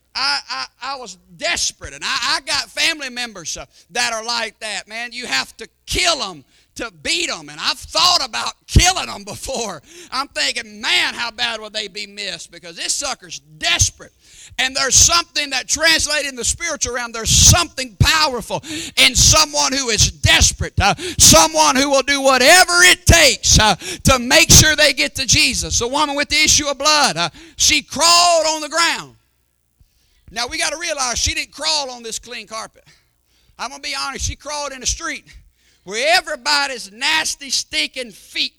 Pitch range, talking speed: 235-305 Hz, 180 wpm